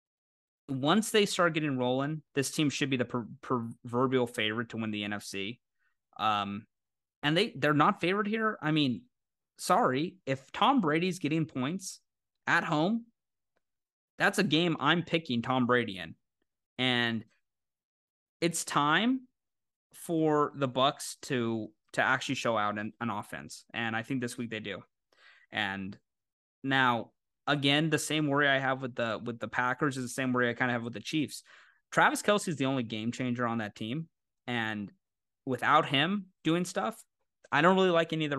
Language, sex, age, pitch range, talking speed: English, male, 20-39, 115-155 Hz, 170 wpm